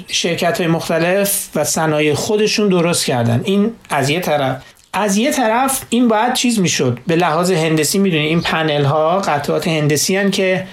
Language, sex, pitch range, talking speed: Persian, male, 155-210 Hz, 170 wpm